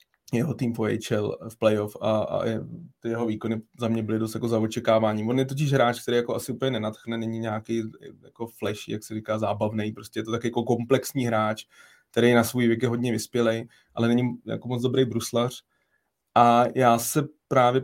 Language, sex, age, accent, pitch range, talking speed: Czech, male, 20-39, native, 110-120 Hz, 195 wpm